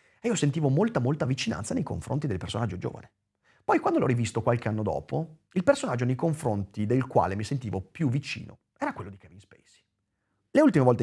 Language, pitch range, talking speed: Italian, 110-170 Hz, 195 wpm